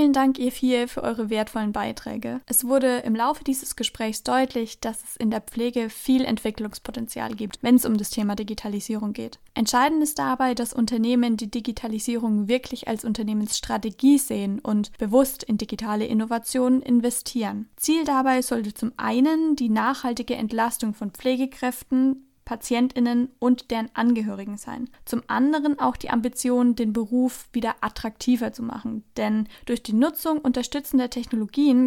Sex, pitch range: female, 220-255 Hz